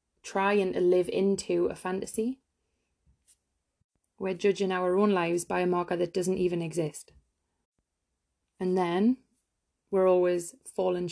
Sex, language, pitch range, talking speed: female, English, 175-195 Hz, 125 wpm